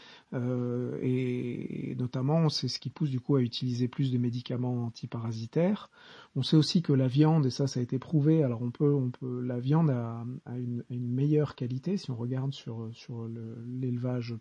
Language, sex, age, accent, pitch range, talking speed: English, male, 40-59, French, 125-145 Hz, 210 wpm